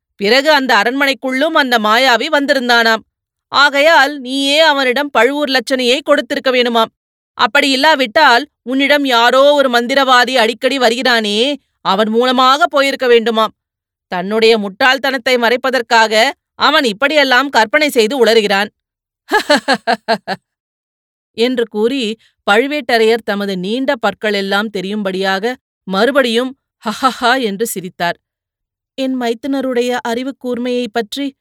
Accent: native